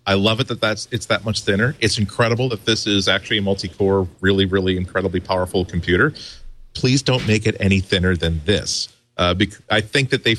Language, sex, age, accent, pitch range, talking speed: English, male, 40-59, American, 95-115 Hz, 210 wpm